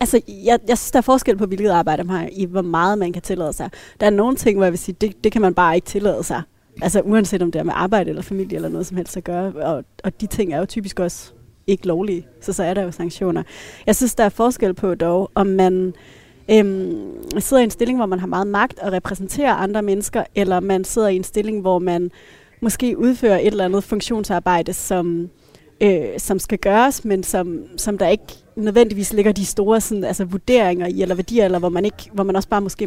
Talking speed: 240 wpm